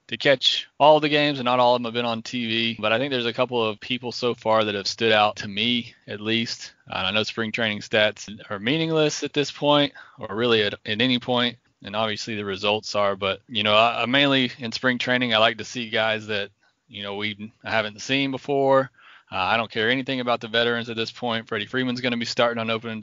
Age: 20-39